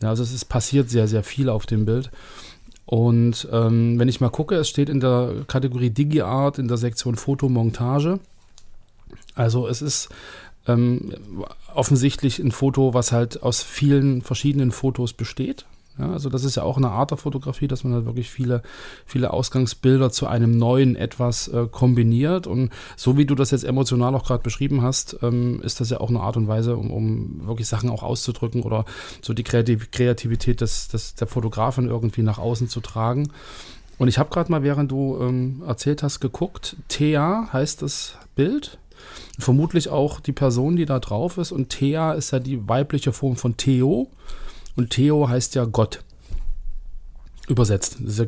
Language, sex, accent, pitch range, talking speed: German, male, German, 115-140 Hz, 180 wpm